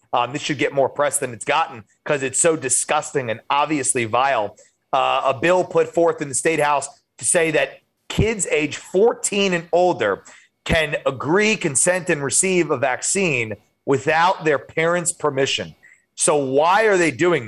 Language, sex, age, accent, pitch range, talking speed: English, male, 30-49, American, 140-175 Hz, 170 wpm